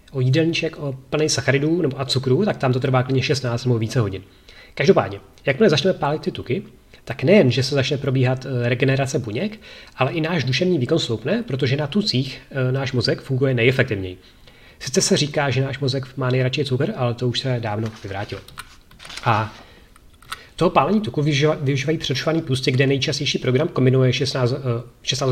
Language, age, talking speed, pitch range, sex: Czech, 30-49, 170 wpm, 120-145 Hz, male